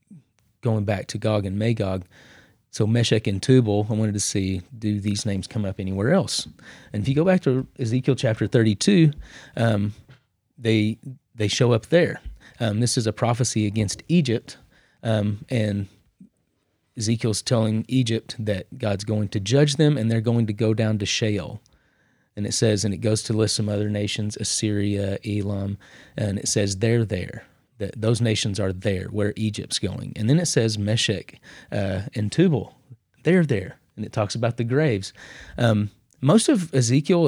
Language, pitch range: English, 105-130 Hz